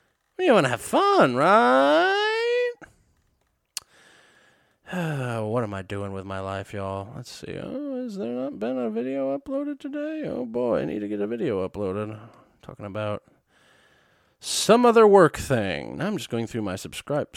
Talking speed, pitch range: 160 wpm, 105-160 Hz